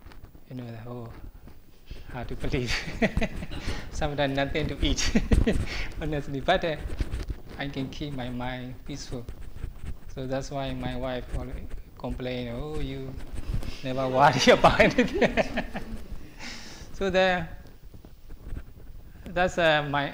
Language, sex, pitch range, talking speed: English, male, 95-140 Hz, 105 wpm